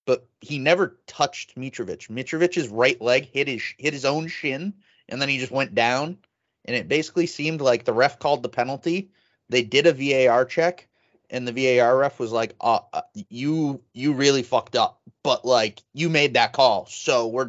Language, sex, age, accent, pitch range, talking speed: English, male, 30-49, American, 120-150 Hz, 195 wpm